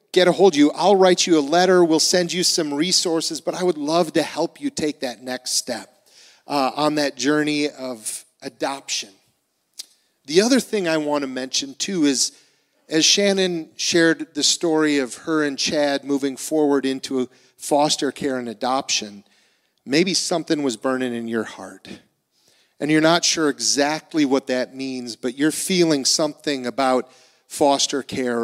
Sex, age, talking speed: male, 40-59, 165 wpm